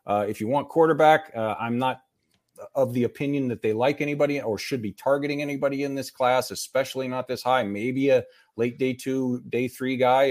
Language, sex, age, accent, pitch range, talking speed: English, male, 40-59, American, 105-135 Hz, 205 wpm